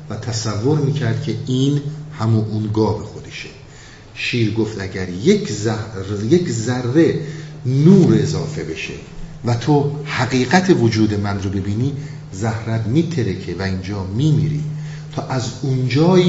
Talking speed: 120 wpm